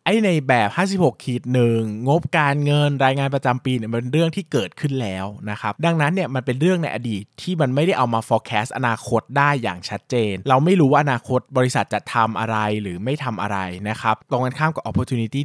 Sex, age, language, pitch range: male, 20-39, Thai, 115-145 Hz